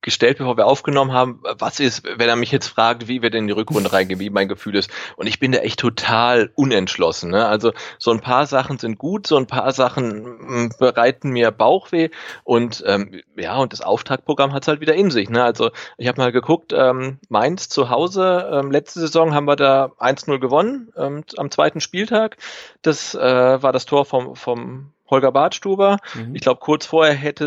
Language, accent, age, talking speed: German, German, 30-49, 200 wpm